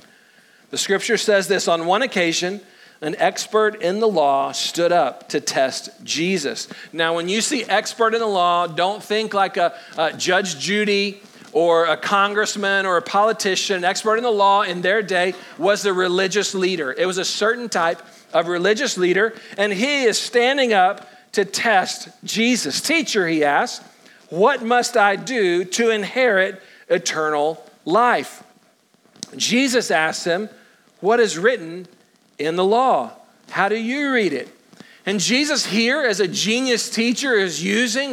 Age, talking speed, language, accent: 50-69, 155 wpm, English, American